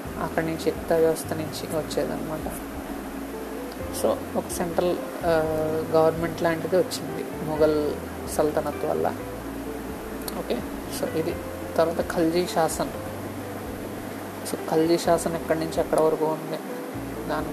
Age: 30-49